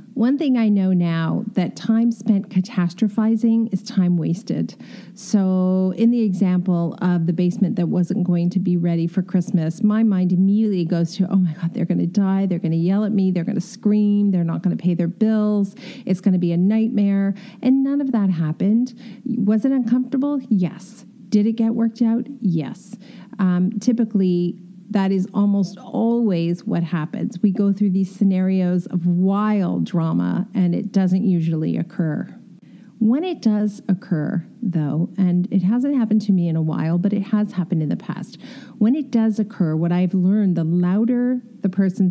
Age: 40-59